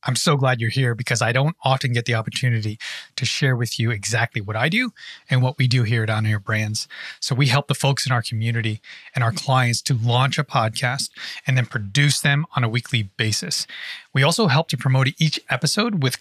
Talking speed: 220 wpm